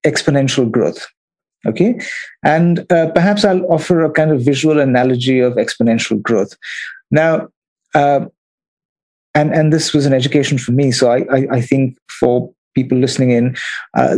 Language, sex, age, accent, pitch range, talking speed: English, male, 50-69, Indian, 125-160 Hz, 150 wpm